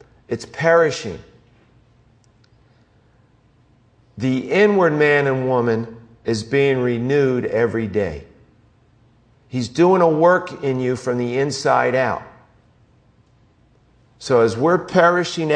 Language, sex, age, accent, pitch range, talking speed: English, male, 50-69, American, 115-150 Hz, 100 wpm